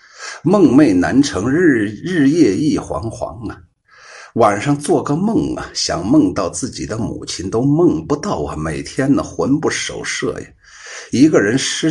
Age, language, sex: 50-69, Chinese, male